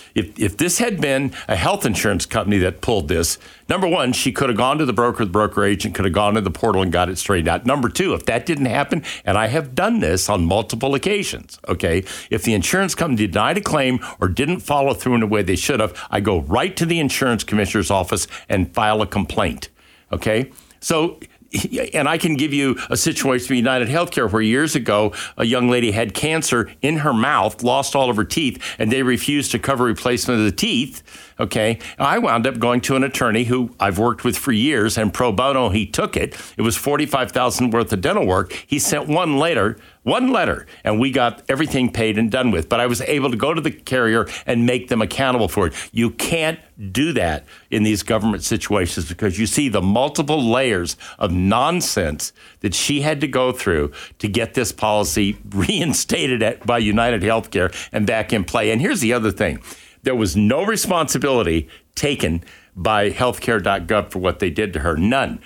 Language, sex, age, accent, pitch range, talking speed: English, male, 60-79, American, 105-130 Hz, 205 wpm